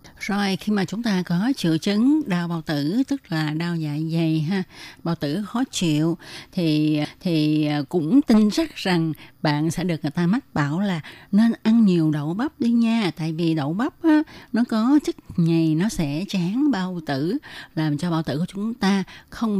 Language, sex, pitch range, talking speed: Vietnamese, female, 160-210 Hz, 195 wpm